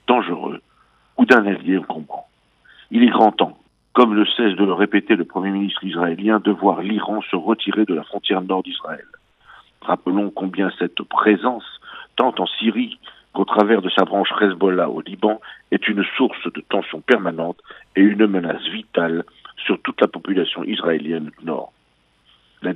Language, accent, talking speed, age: French, French, 160 wpm, 50-69